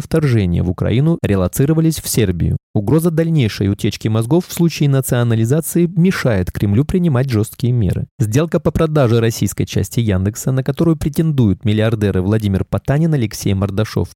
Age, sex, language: 20-39, male, Russian